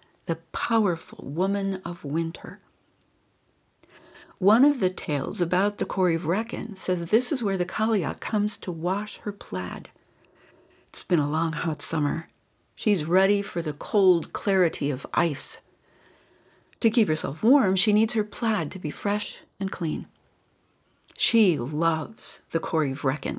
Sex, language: female, English